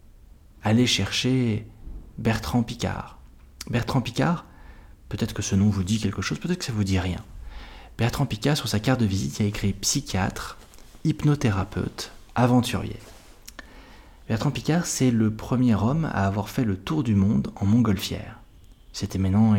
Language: French